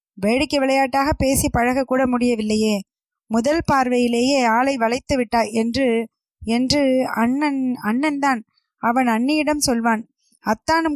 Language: Tamil